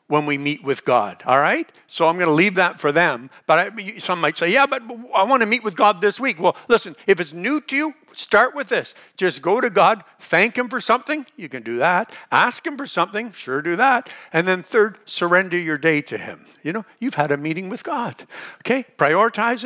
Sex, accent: male, American